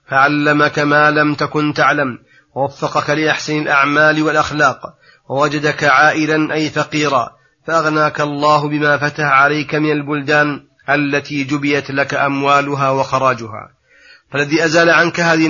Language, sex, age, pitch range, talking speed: Arabic, male, 30-49, 140-155 Hz, 110 wpm